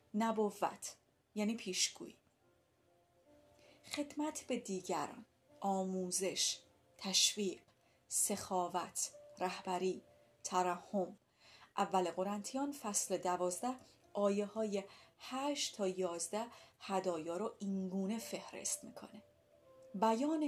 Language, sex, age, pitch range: Persian, female, 30-49, 190-255 Hz